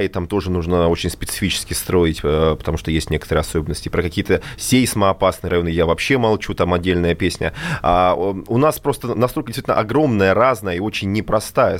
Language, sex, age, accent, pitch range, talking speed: Russian, male, 20-39, native, 90-120 Hz, 160 wpm